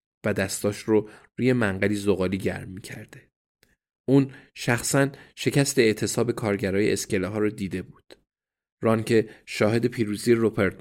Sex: male